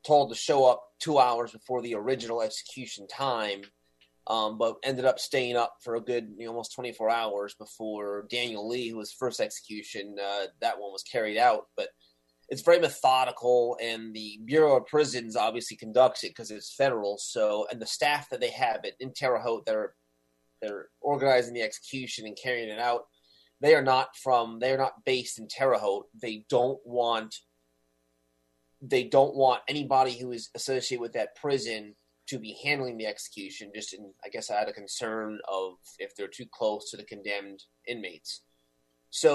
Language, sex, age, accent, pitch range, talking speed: English, male, 30-49, American, 105-130 Hz, 175 wpm